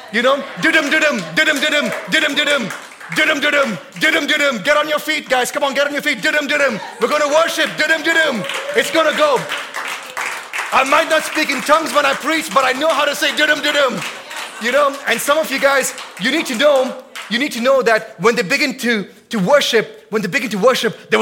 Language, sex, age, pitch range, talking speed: English, male, 30-49, 260-330 Hz, 230 wpm